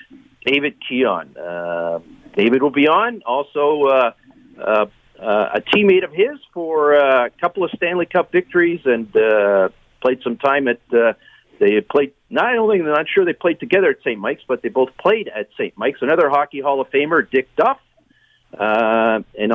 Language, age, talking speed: English, 50-69, 180 wpm